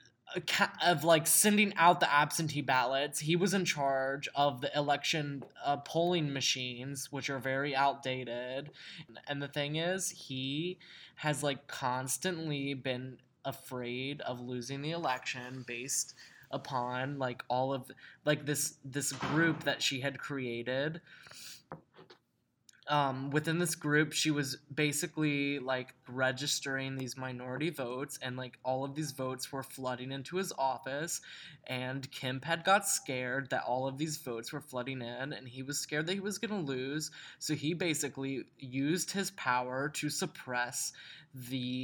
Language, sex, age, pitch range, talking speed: English, male, 10-29, 130-155 Hz, 150 wpm